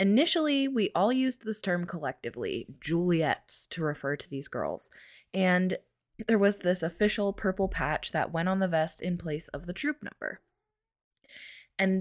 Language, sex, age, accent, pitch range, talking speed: English, female, 20-39, American, 145-190 Hz, 160 wpm